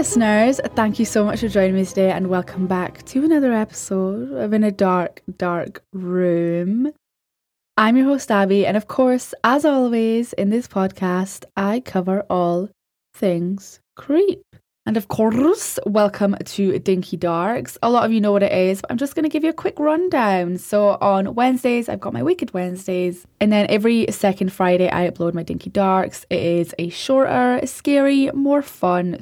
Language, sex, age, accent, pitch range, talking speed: English, female, 10-29, British, 180-230 Hz, 180 wpm